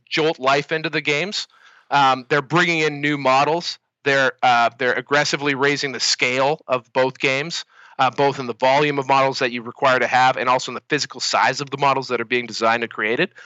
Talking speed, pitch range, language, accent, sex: 215 wpm, 135-165 Hz, English, American, male